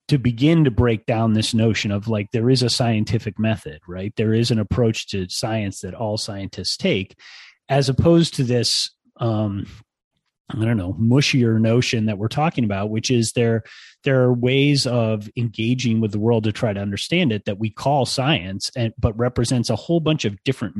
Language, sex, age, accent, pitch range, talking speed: English, male, 30-49, American, 110-125 Hz, 195 wpm